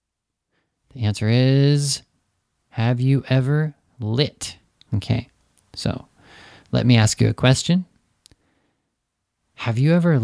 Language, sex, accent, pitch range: Japanese, male, American, 110-130 Hz